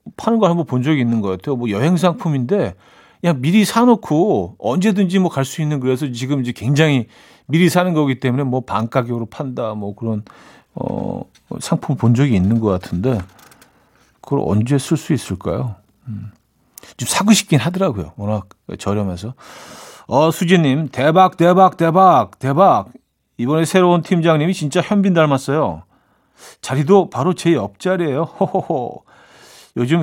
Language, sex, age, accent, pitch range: Korean, male, 40-59, native, 115-165 Hz